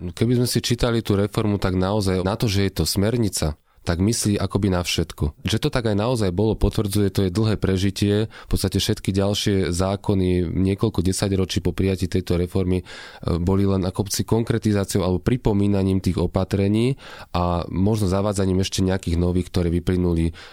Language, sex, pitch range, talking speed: Slovak, male, 90-110 Hz, 165 wpm